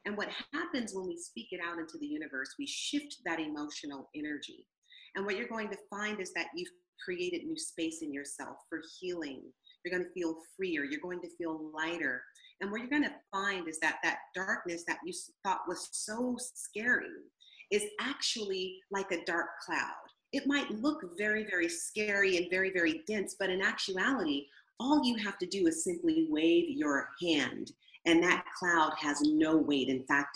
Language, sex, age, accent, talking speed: English, female, 30-49, American, 185 wpm